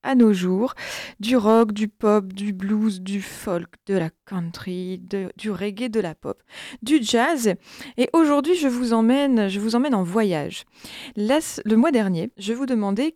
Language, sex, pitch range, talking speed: French, female, 190-240 Hz, 180 wpm